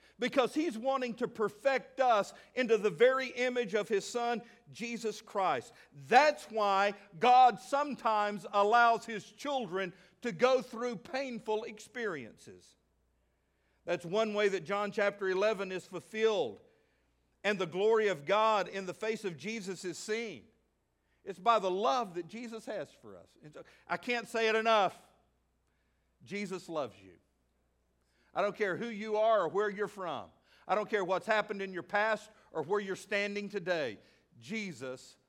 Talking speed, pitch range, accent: 150 wpm, 165-225 Hz, American